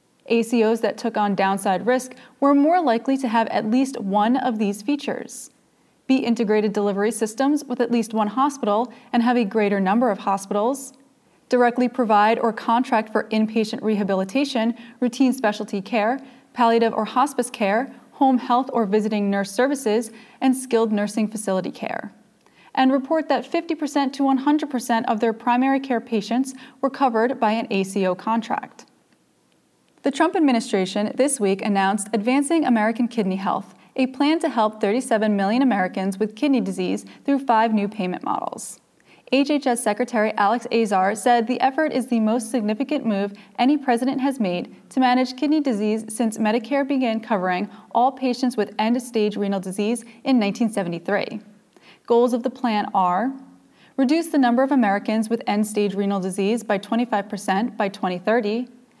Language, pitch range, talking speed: English, 210-255 Hz, 155 wpm